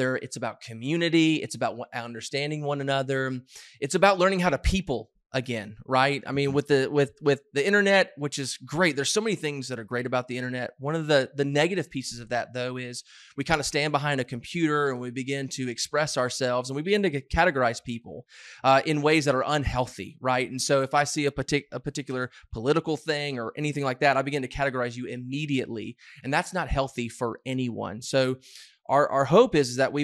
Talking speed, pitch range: 215 wpm, 125-150 Hz